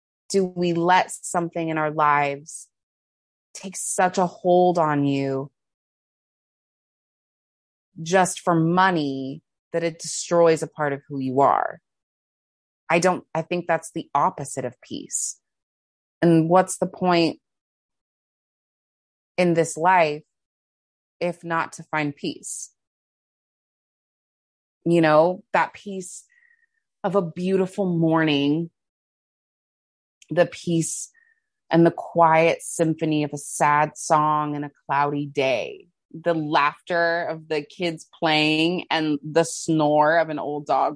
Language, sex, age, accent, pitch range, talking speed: English, female, 30-49, American, 145-180 Hz, 120 wpm